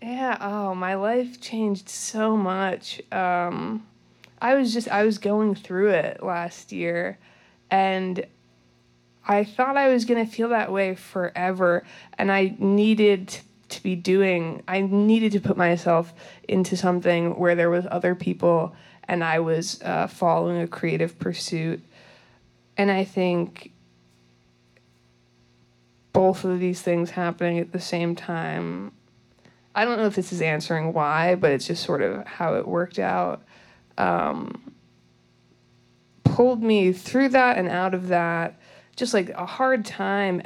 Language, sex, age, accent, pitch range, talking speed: English, female, 20-39, American, 155-200 Hz, 145 wpm